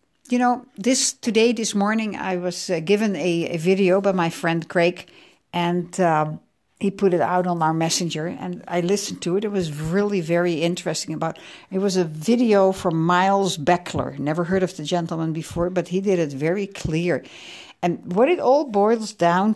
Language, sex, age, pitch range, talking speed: English, female, 60-79, 170-220 Hz, 190 wpm